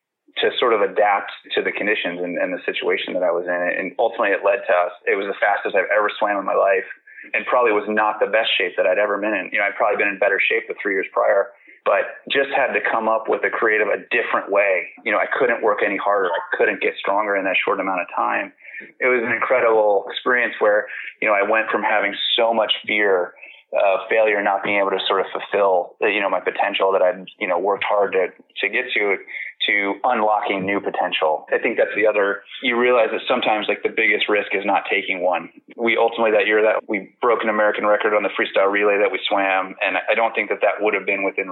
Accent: American